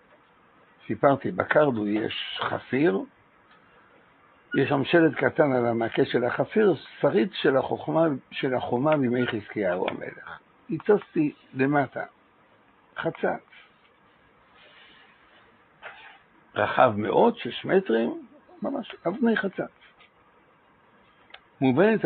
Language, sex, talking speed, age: Hebrew, male, 85 wpm, 60-79